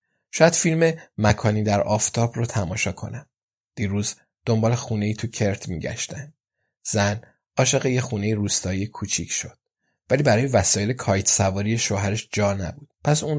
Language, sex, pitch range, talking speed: Persian, male, 100-120 Hz, 140 wpm